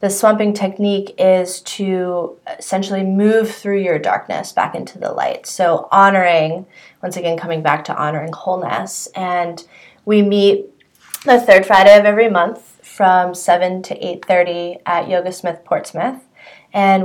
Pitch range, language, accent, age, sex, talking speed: 175-215 Hz, English, American, 20-39, female, 145 wpm